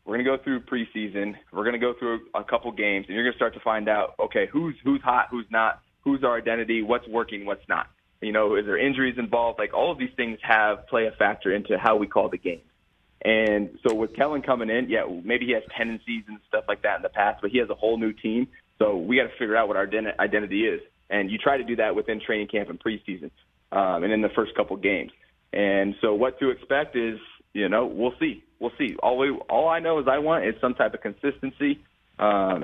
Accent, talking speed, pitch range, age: American, 250 wpm, 110-135 Hz, 20-39